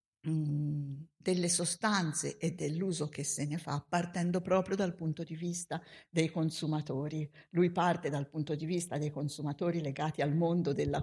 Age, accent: 50-69, native